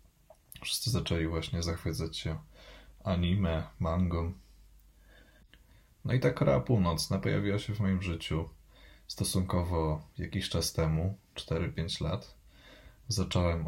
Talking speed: 105 wpm